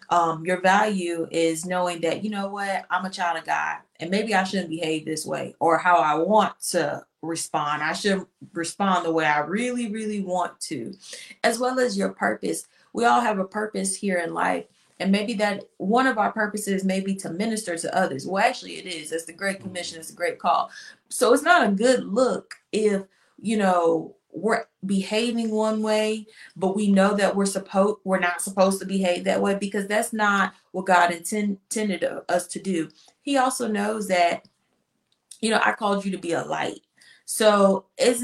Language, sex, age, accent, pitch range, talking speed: English, female, 30-49, American, 170-210 Hz, 195 wpm